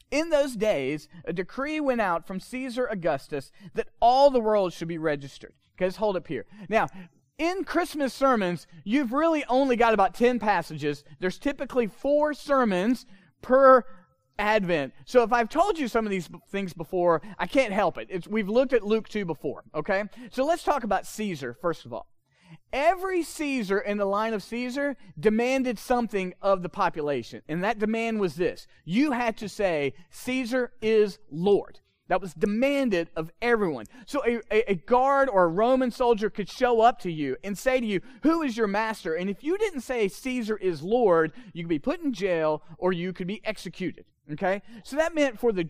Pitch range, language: 180-255 Hz, English